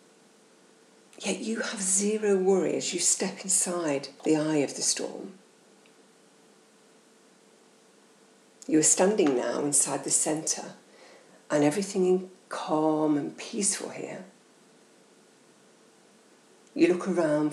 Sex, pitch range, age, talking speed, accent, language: female, 155-210 Hz, 50-69, 105 wpm, British, English